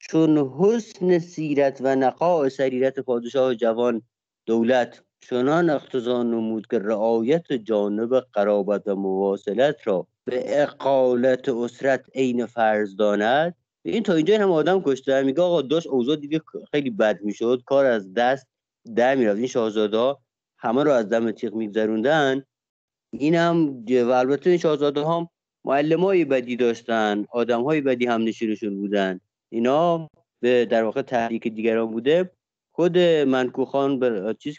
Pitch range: 110-140 Hz